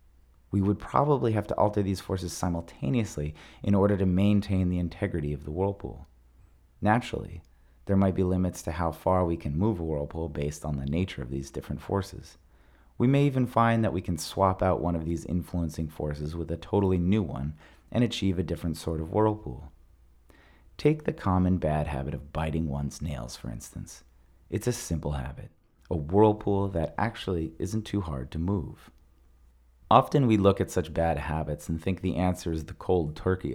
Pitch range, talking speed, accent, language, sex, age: 75-95 Hz, 185 wpm, American, English, male, 30-49